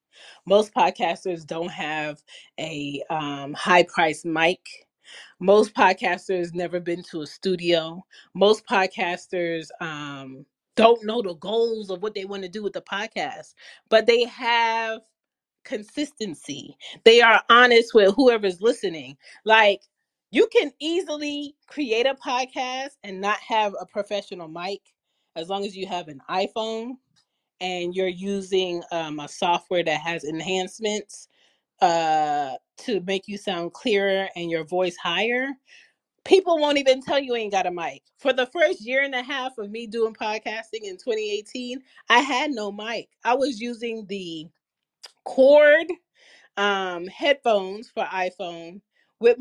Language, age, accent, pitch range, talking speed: English, 30-49, American, 180-250 Hz, 140 wpm